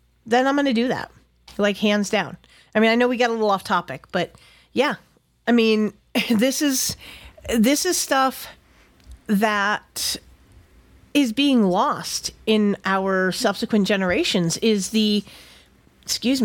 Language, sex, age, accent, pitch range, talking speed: English, female, 40-59, American, 190-245 Hz, 140 wpm